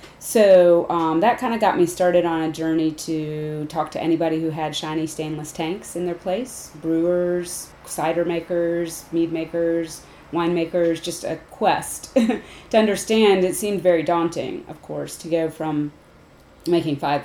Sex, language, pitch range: female, English, 145-165 Hz